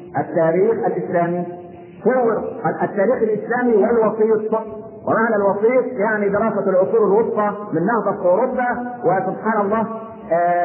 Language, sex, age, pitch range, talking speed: Arabic, male, 50-69, 180-220 Hz, 100 wpm